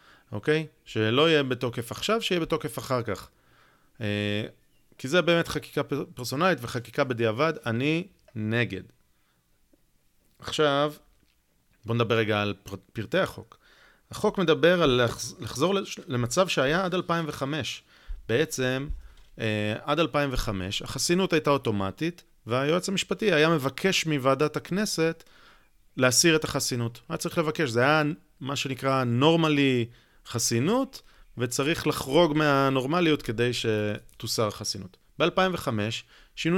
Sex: male